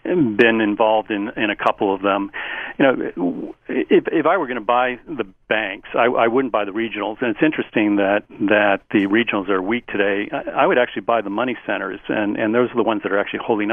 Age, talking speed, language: 50-69, 225 wpm, English